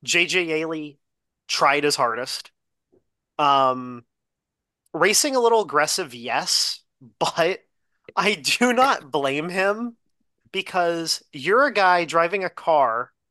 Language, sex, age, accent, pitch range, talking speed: English, male, 30-49, American, 130-170 Hz, 110 wpm